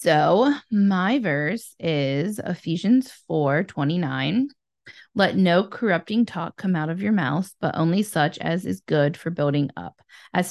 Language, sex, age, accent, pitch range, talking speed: English, female, 20-39, American, 155-200 Hz, 150 wpm